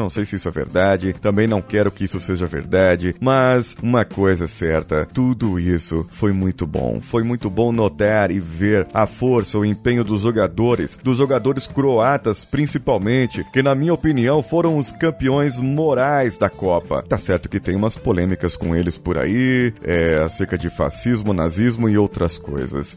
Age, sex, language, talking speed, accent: 30-49, male, Portuguese, 170 wpm, Brazilian